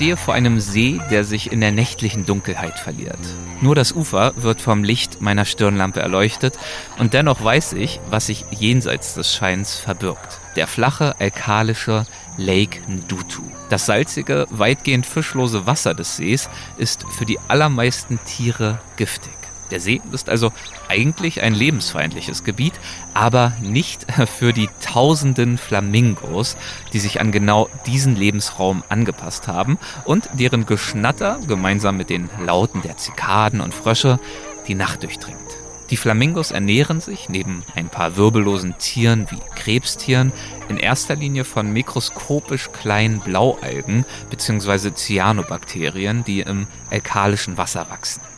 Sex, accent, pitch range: male, German, 95-125 Hz